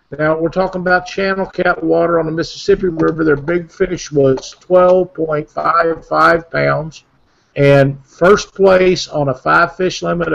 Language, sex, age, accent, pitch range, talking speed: English, male, 50-69, American, 140-180 Hz, 140 wpm